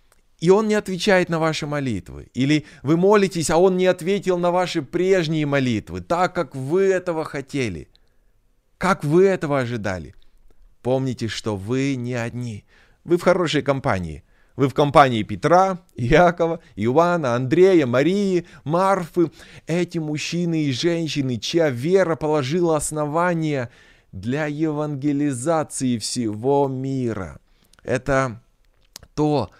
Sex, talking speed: male, 120 wpm